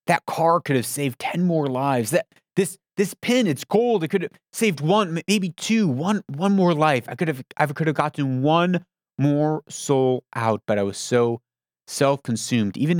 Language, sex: English, male